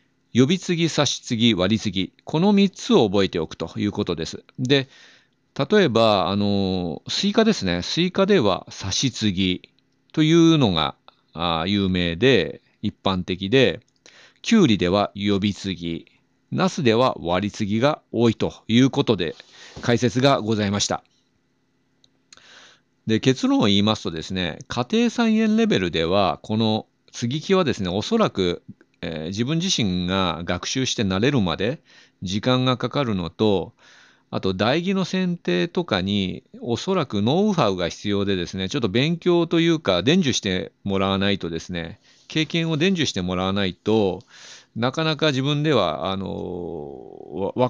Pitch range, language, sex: 95-155 Hz, Japanese, male